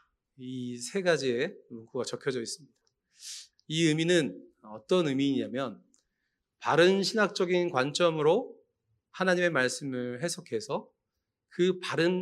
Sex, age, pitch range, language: male, 40-59, 135-190 Hz, Korean